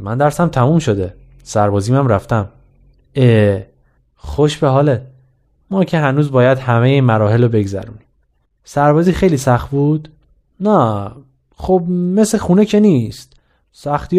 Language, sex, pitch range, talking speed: Persian, male, 115-160 Hz, 125 wpm